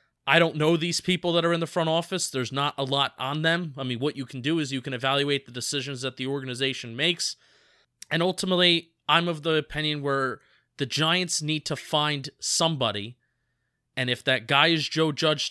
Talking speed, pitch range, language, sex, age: 205 wpm, 135-185 Hz, English, male, 30-49